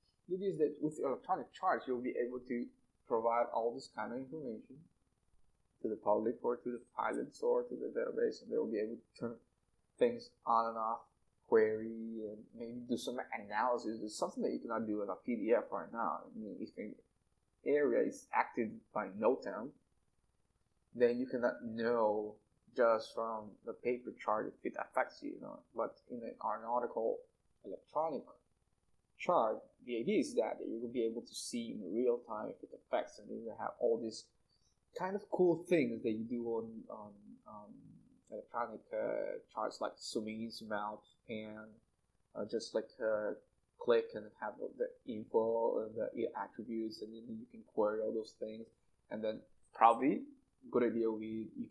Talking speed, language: 180 wpm, English